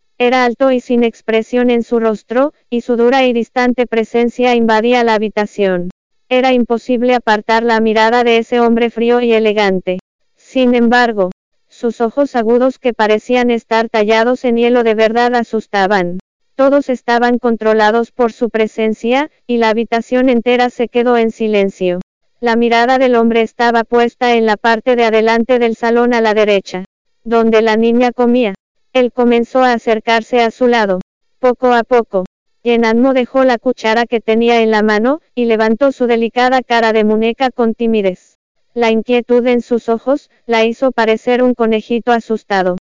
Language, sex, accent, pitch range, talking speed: English, female, American, 225-245 Hz, 160 wpm